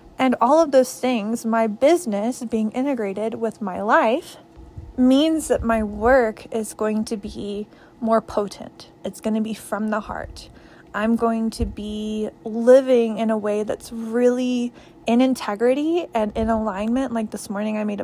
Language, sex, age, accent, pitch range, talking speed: English, female, 20-39, American, 215-255 Hz, 165 wpm